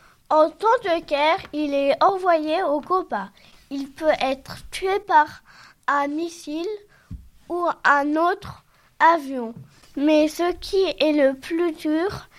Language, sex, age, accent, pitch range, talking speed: French, female, 20-39, French, 285-340 Hz, 130 wpm